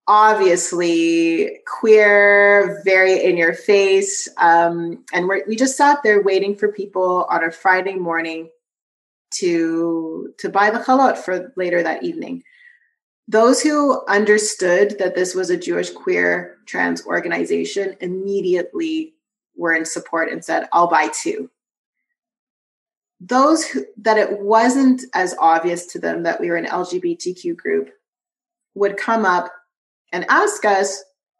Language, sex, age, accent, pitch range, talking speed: English, female, 30-49, American, 175-270 Hz, 130 wpm